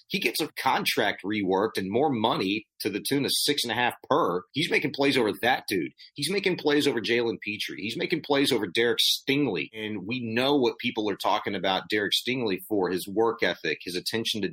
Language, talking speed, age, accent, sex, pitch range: English, 215 wpm, 30-49, American, male, 95-125 Hz